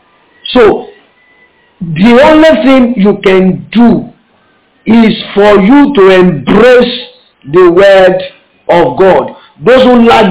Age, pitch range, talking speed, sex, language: 50-69, 175-235 Hz, 110 wpm, male, English